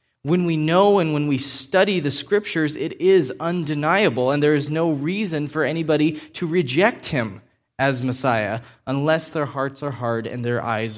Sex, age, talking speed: male, 20-39, 175 wpm